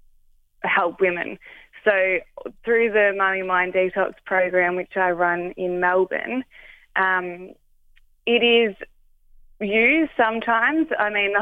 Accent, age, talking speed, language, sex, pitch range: Australian, 20-39, 115 wpm, English, female, 175-190 Hz